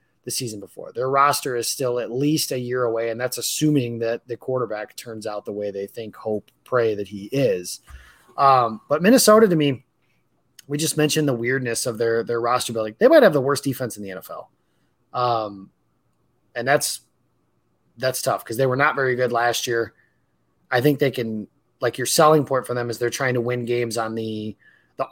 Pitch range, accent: 110-135 Hz, American